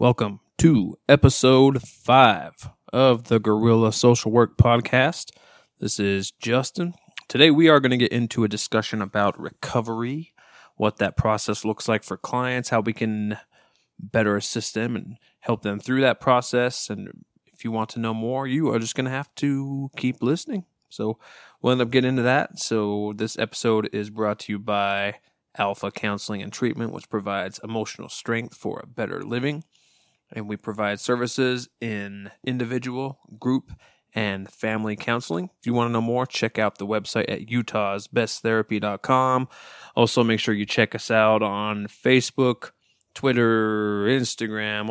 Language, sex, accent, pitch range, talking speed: English, male, American, 105-125 Hz, 160 wpm